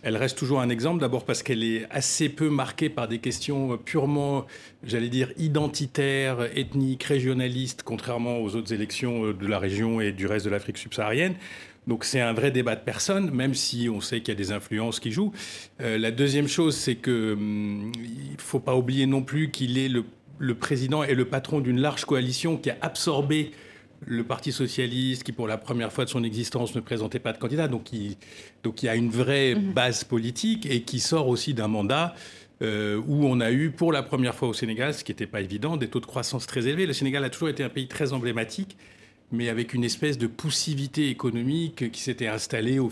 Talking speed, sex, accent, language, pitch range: 210 wpm, male, French, French, 115-145 Hz